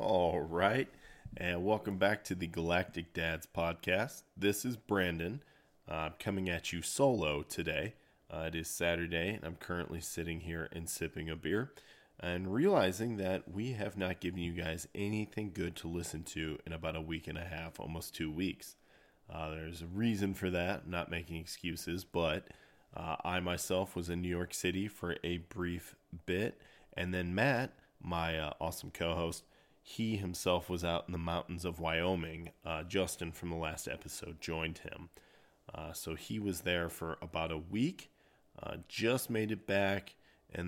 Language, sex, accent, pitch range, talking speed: English, male, American, 80-95 Hz, 175 wpm